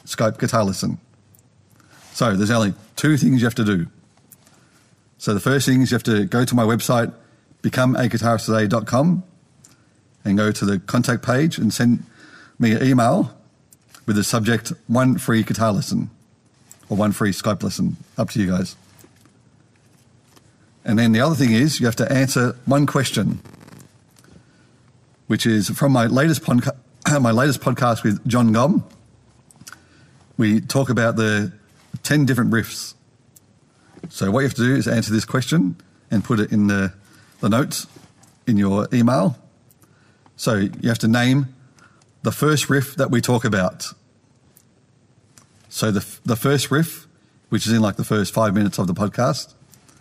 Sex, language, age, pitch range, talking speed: male, English, 40-59, 110-130 Hz, 155 wpm